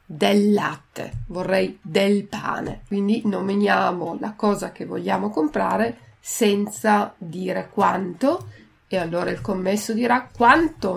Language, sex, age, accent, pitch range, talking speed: Italian, female, 30-49, native, 190-230 Hz, 115 wpm